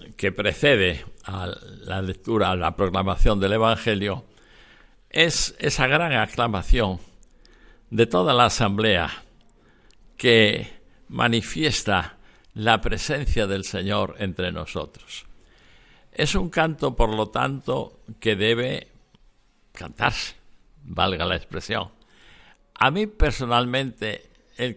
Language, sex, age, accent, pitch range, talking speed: Spanish, male, 60-79, Spanish, 100-125 Hz, 100 wpm